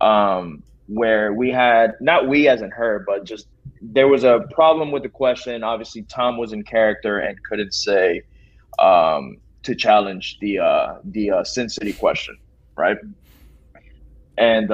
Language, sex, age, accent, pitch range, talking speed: English, male, 20-39, American, 100-130 Hz, 155 wpm